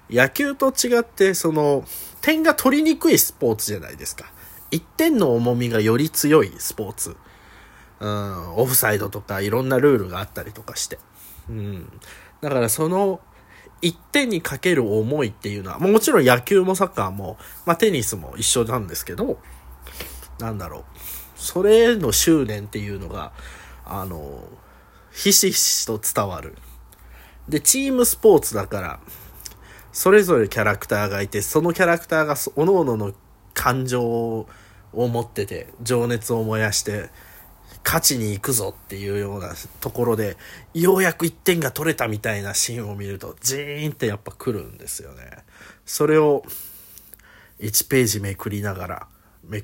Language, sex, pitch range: Japanese, male, 100-160 Hz